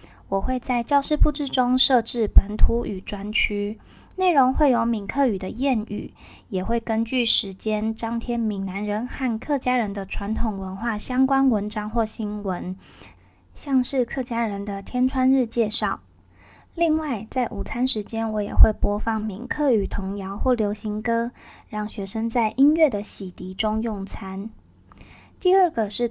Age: 10-29